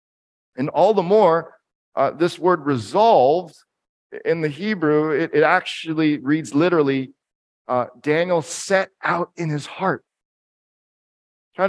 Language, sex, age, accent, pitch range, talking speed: English, male, 40-59, American, 115-155 Hz, 125 wpm